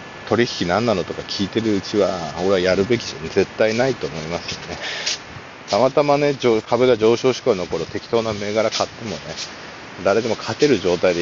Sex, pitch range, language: male, 105-135 Hz, Japanese